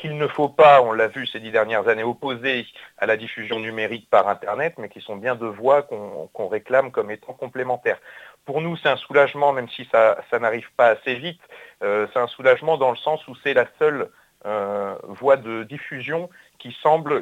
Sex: male